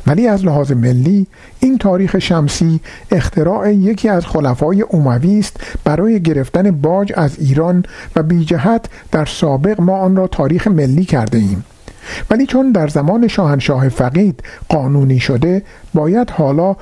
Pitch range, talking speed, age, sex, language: 135-190 Hz, 135 wpm, 50-69, male, Persian